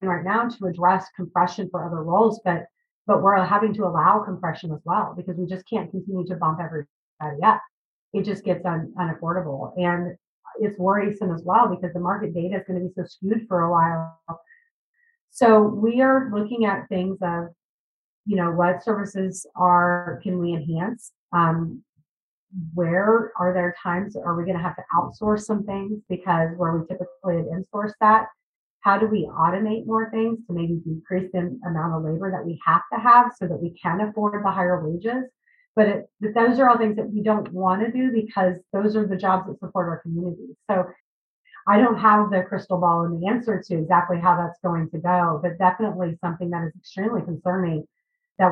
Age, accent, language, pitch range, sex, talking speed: 30-49, American, English, 175-210 Hz, female, 195 wpm